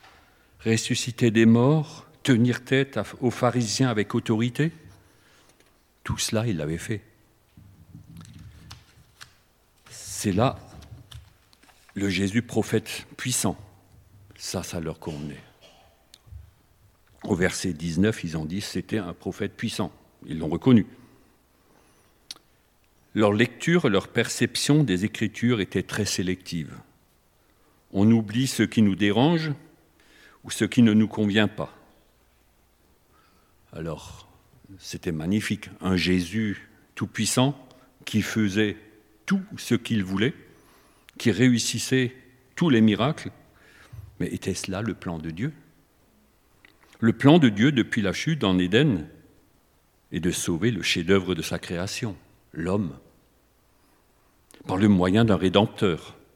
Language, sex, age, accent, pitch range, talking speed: French, male, 50-69, French, 95-120 Hz, 115 wpm